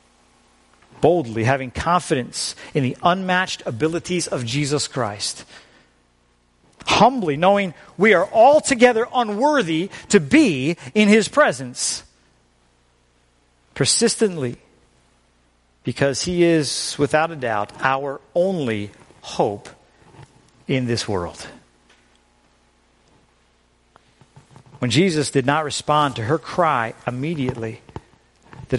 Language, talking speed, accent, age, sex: English, 90 wpm, American, 50-69, male